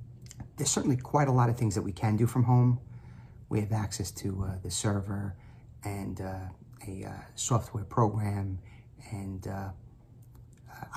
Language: English